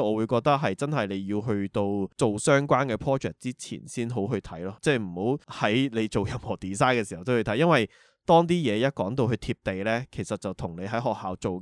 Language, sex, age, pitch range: Chinese, male, 20-39, 100-125 Hz